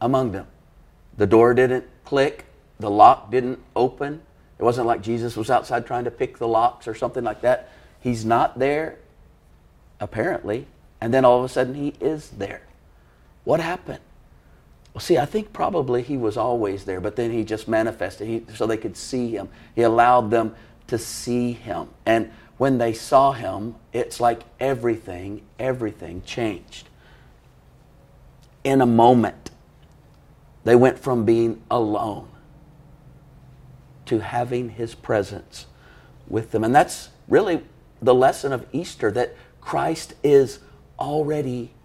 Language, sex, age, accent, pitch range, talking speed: English, male, 40-59, American, 110-135 Hz, 145 wpm